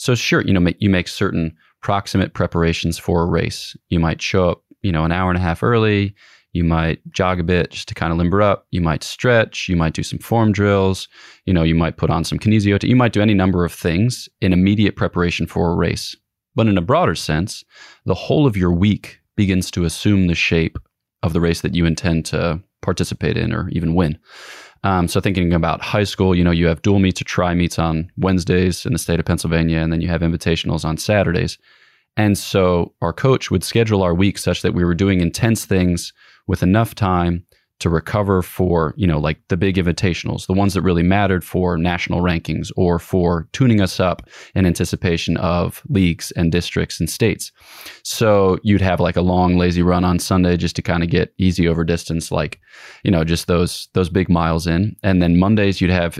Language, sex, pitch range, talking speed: English, male, 85-100 Hz, 215 wpm